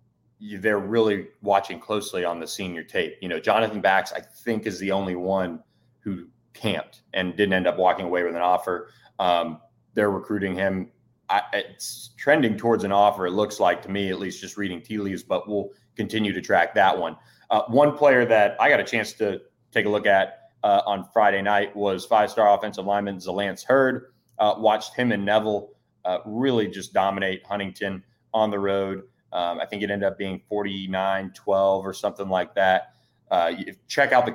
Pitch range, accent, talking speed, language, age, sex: 95-115 Hz, American, 190 wpm, English, 30-49, male